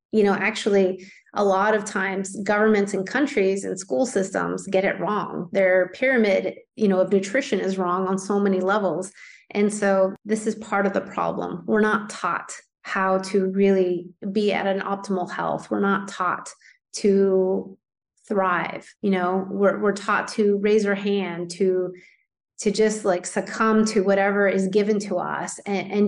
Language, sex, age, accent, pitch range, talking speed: English, female, 30-49, American, 190-215 Hz, 170 wpm